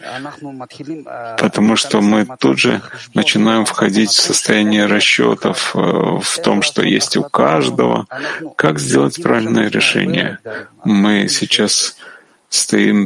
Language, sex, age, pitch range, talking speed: Ukrainian, male, 30-49, 110-160 Hz, 105 wpm